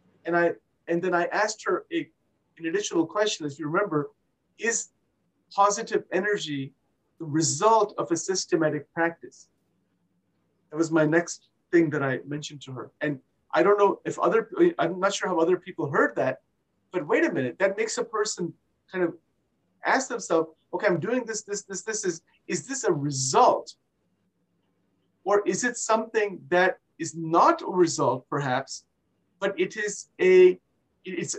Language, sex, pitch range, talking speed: English, male, 160-215 Hz, 165 wpm